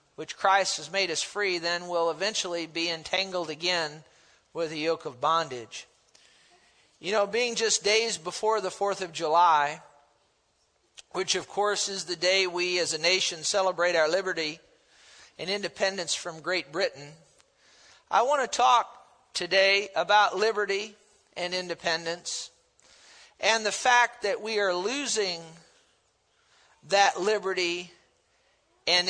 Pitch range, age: 160-205 Hz, 50-69